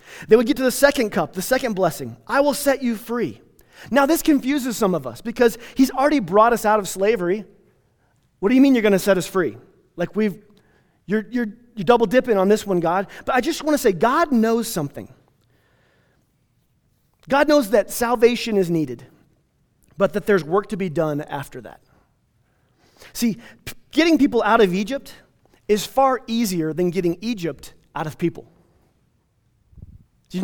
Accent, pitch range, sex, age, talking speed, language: American, 160-235 Hz, male, 30-49, 175 wpm, English